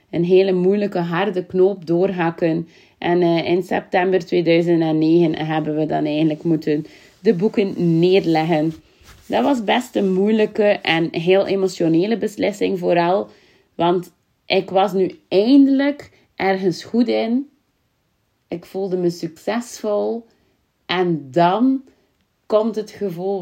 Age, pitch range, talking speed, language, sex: 30-49, 170-200 Hz, 115 wpm, Dutch, female